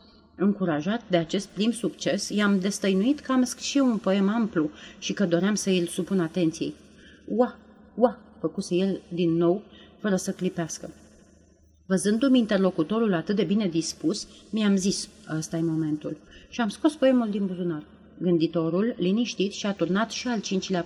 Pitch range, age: 170-215 Hz, 30-49